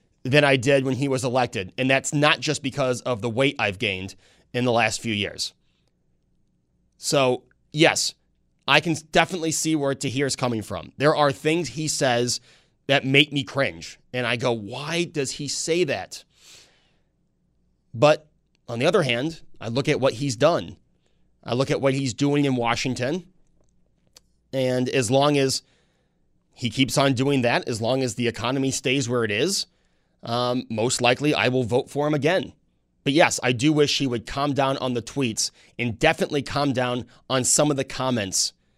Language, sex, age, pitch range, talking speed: English, male, 30-49, 120-150 Hz, 180 wpm